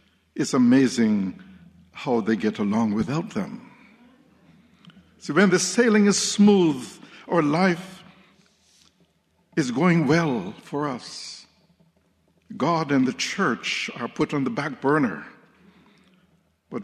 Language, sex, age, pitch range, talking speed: English, male, 60-79, 130-205 Hz, 115 wpm